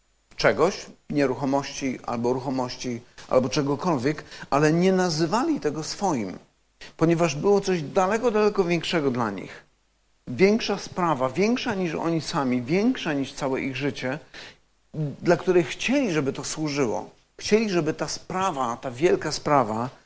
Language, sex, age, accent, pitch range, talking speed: Polish, male, 50-69, native, 135-170 Hz, 130 wpm